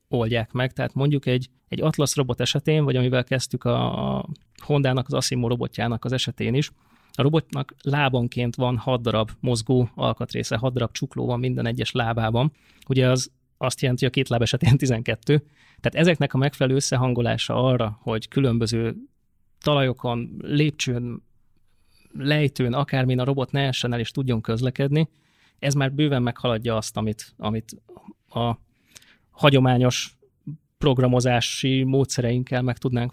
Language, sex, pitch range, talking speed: Hungarian, male, 120-135 Hz, 145 wpm